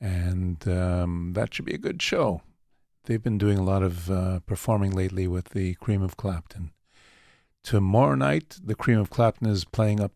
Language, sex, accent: English, male, American